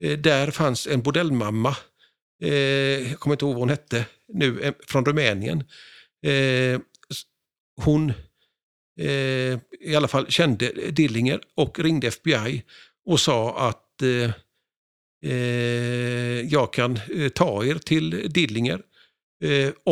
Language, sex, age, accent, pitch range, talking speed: Swedish, male, 50-69, native, 125-150 Hz, 110 wpm